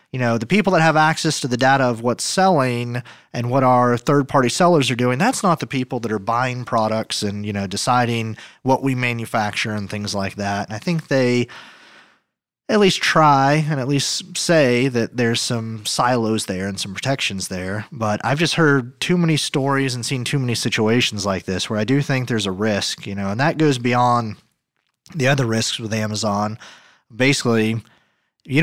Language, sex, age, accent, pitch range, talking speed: English, male, 30-49, American, 110-140 Hz, 195 wpm